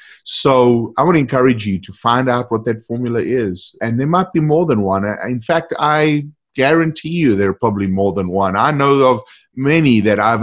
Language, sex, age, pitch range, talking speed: English, male, 30-49, 100-125 Hz, 215 wpm